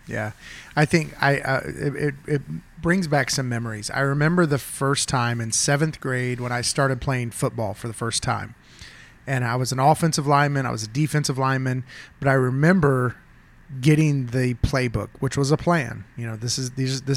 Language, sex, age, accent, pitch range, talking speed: English, male, 30-49, American, 125-155 Hz, 180 wpm